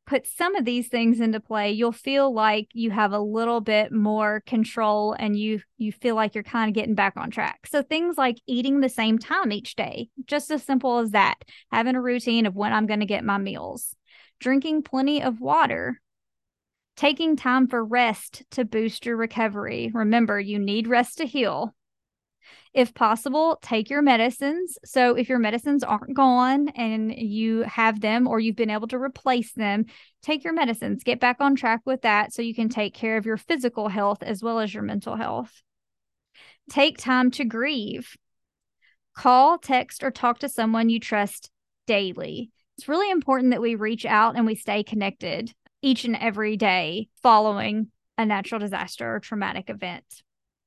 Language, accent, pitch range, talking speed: English, American, 215-260 Hz, 180 wpm